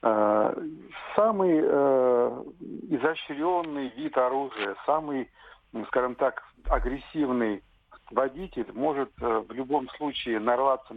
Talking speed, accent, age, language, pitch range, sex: 95 wpm, native, 50-69, Russian, 120-155 Hz, male